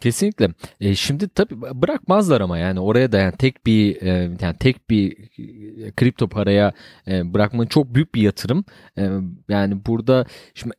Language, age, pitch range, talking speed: Turkish, 30-49, 100-135 Hz, 135 wpm